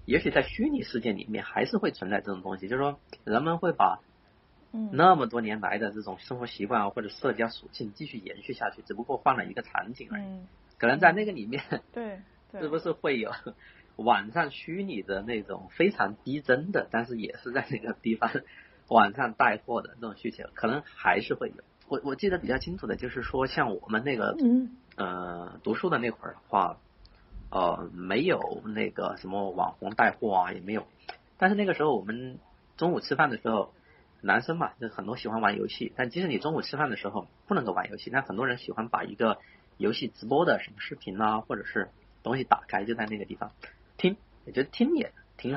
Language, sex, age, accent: Chinese, male, 30-49, native